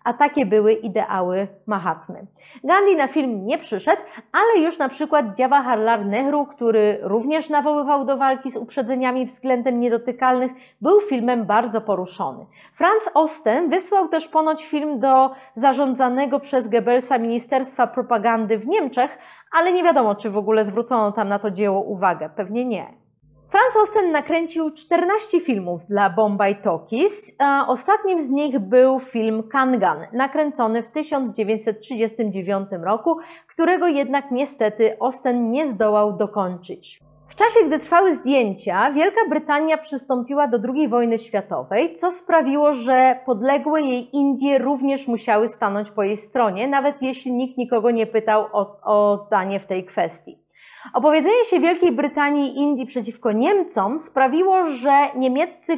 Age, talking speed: 30-49, 140 wpm